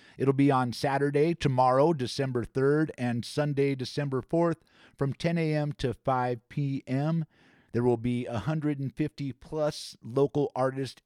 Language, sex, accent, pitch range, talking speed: English, male, American, 115-145 Hz, 125 wpm